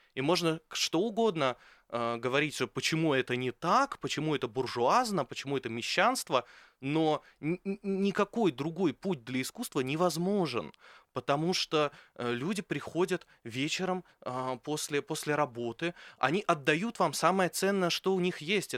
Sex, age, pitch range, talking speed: male, 20-39, 130-180 Hz, 135 wpm